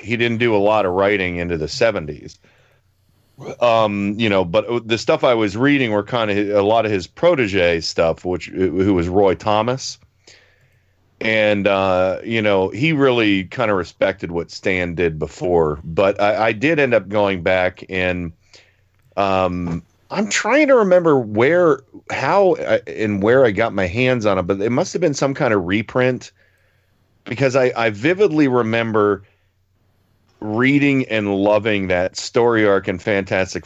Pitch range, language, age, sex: 95-125 Hz, English, 40-59, male